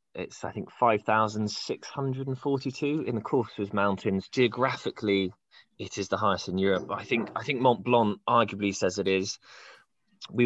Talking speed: 155 wpm